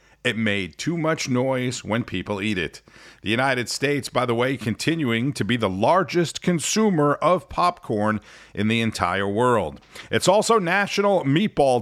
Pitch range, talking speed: 105-150 Hz, 155 wpm